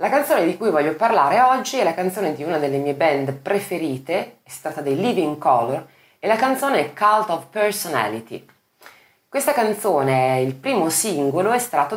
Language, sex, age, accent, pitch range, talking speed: Italian, female, 20-39, native, 130-195 Hz, 175 wpm